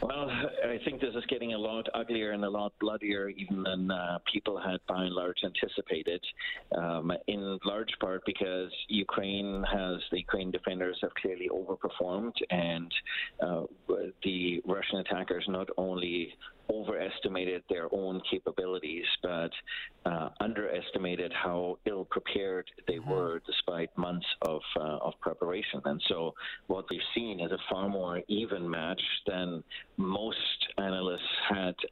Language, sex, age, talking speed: English, male, 40-59, 140 wpm